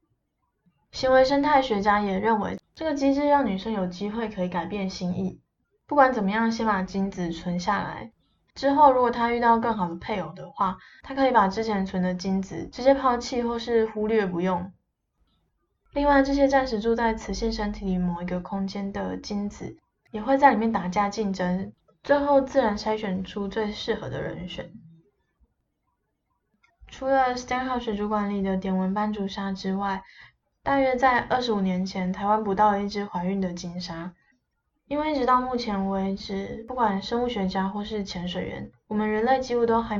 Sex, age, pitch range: female, 10-29, 190-235 Hz